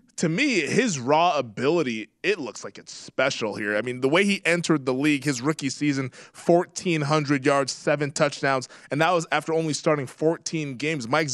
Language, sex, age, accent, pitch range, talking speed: English, male, 20-39, American, 140-170 Hz, 185 wpm